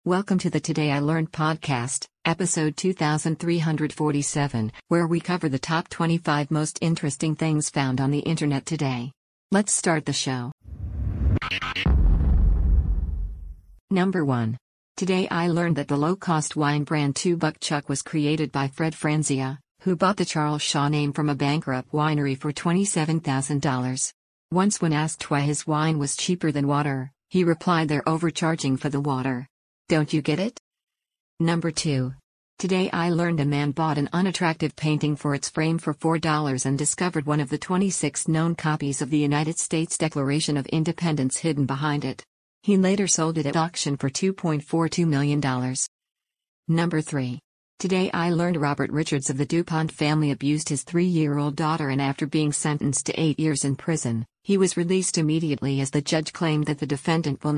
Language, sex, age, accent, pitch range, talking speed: English, female, 50-69, American, 140-165 Hz, 165 wpm